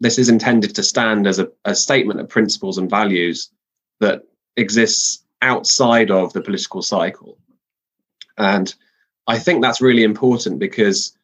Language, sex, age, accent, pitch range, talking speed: English, male, 20-39, British, 90-115 Hz, 145 wpm